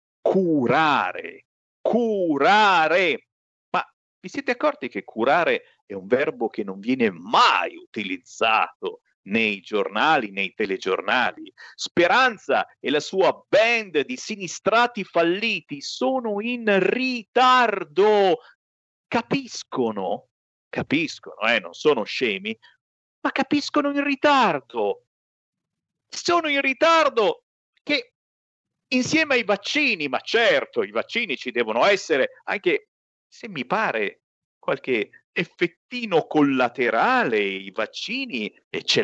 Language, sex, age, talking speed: Italian, male, 50-69, 100 wpm